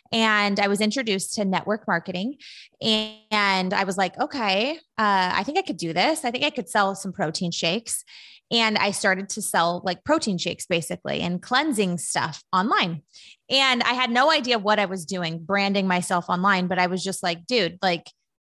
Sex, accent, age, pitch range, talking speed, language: female, American, 20-39, 185-230 Hz, 195 wpm, English